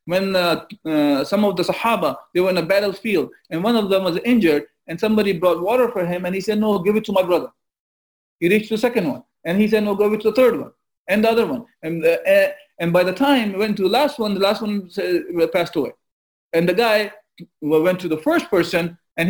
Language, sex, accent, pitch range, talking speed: English, male, Indian, 165-220 Hz, 255 wpm